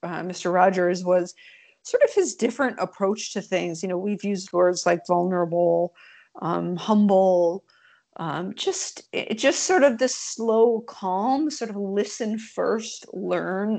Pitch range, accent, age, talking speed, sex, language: 185-230 Hz, American, 40-59, 145 wpm, female, English